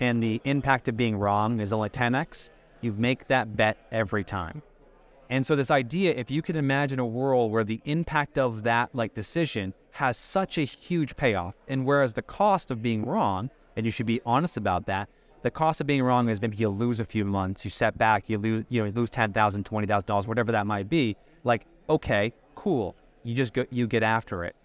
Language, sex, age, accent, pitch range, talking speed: English, male, 30-49, American, 110-140 Hz, 220 wpm